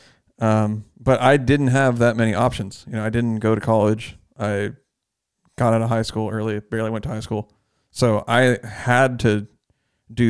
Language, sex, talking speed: English, male, 185 wpm